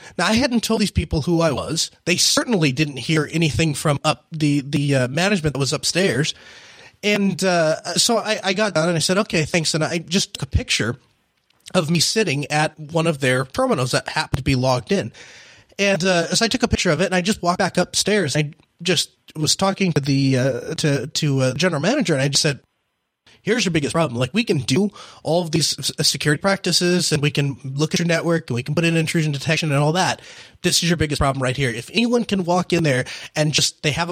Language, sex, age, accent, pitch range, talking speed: English, male, 30-49, American, 145-185 Hz, 235 wpm